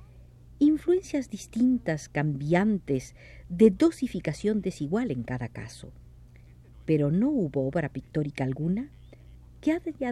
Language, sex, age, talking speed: Spanish, female, 50-69, 100 wpm